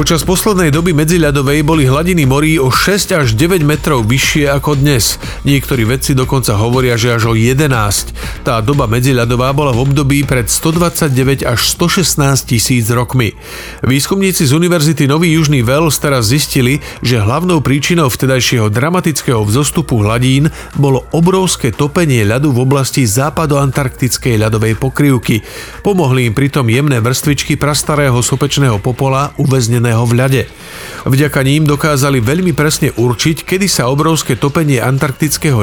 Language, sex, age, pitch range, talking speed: Slovak, male, 40-59, 125-150 Hz, 140 wpm